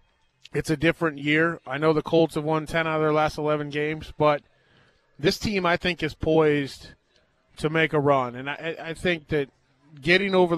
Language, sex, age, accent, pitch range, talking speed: English, male, 20-39, American, 145-170 Hz, 200 wpm